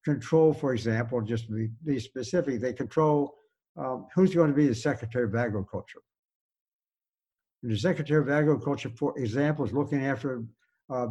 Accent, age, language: American, 60-79, English